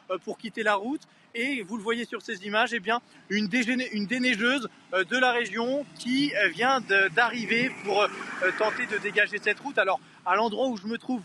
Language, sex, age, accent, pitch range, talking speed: French, male, 20-39, French, 200-245 Hz, 200 wpm